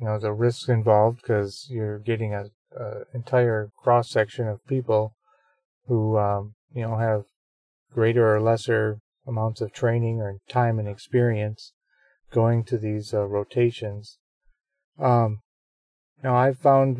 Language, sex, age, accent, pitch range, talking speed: English, male, 40-59, American, 110-125 Hz, 135 wpm